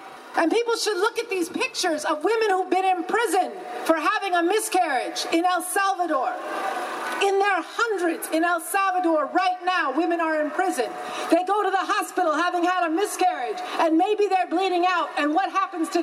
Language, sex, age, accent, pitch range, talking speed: English, female, 40-59, American, 345-395 Hz, 185 wpm